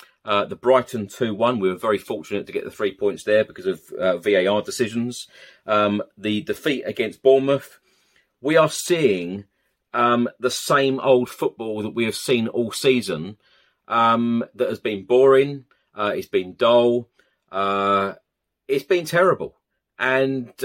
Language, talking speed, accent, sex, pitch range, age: English, 150 wpm, British, male, 115-140 Hz, 40-59